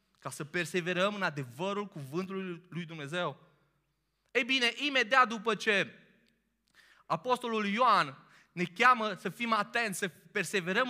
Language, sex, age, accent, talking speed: Romanian, male, 20-39, native, 120 wpm